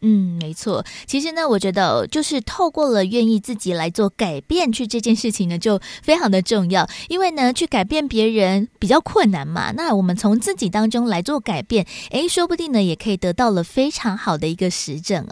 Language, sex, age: Chinese, female, 20-39